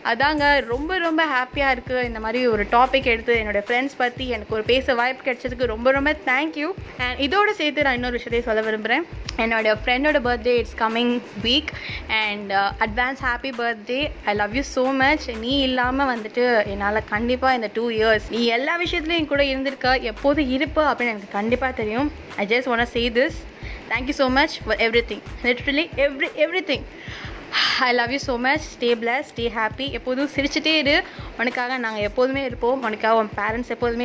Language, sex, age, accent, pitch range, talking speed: Tamil, female, 20-39, native, 230-280 Hz, 175 wpm